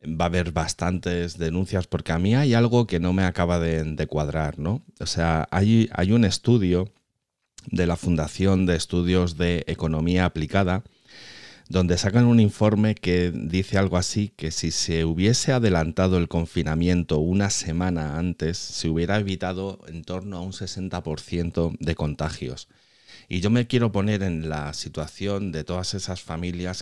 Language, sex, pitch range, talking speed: Spanish, male, 80-95 Hz, 160 wpm